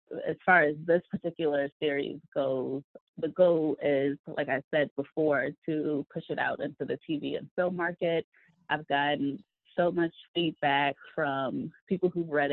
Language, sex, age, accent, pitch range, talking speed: English, female, 20-39, American, 145-170 Hz, 160 wpm